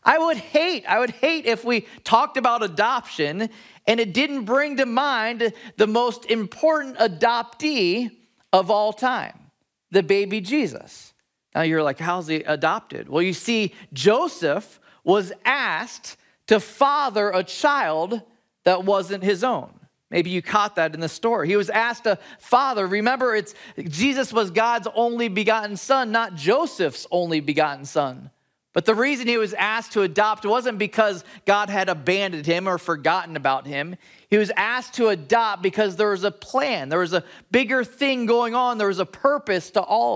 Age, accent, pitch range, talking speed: 40-59, American, 185-235 Hz, 170 wpm